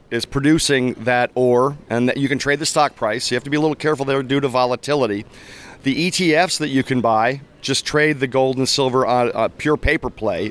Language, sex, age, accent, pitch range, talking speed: English, male, 40-59, American, 120-145 Hz, 230 wpm